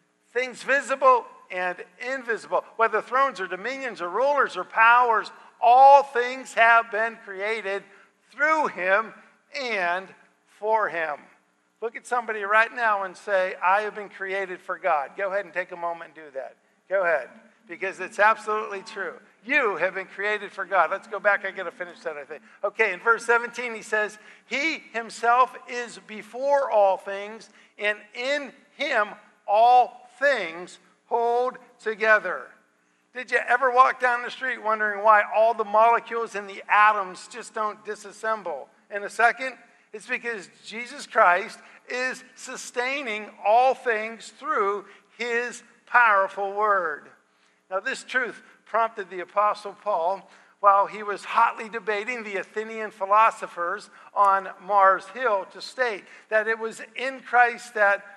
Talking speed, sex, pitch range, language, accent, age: 150 wpm, male, 200-240 Hz, English, American, 50-69